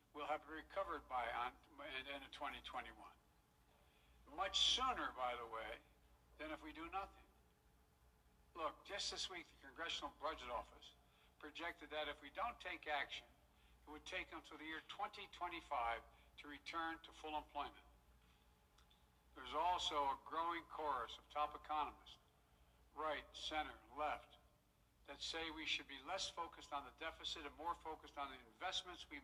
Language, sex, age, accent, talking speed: English, male, 60-79, American, 150 wpm